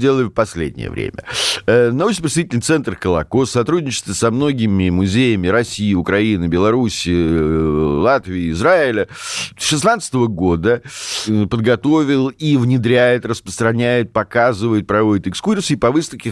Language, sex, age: Russian, male, 50-69